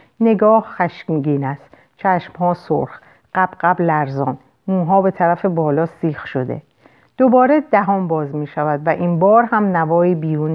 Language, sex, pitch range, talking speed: Persian, female, 170-235 Hz, 135 wpm